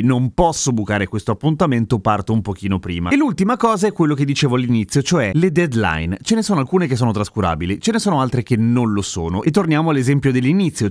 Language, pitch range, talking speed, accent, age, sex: Italian, 110-165 Hz, 215 wpm, native, 30-49, male